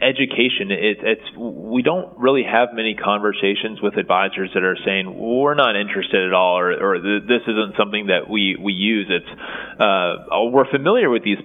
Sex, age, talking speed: male, 20-39, 170 wpm